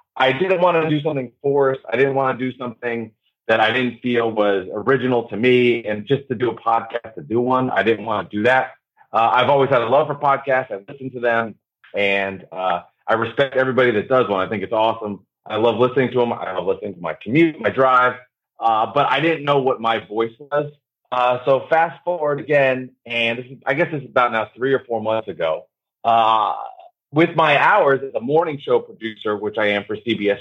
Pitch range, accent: 110-140 Hz, American